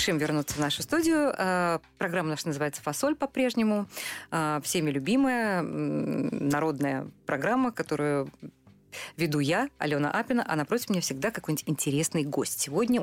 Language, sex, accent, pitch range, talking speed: Russian, female, native, 150-200 Hz, 120 wpm